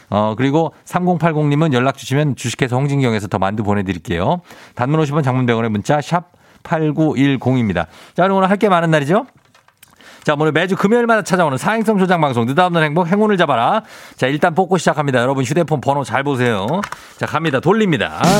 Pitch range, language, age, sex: 135-205 Hz, Korean, 40-59, male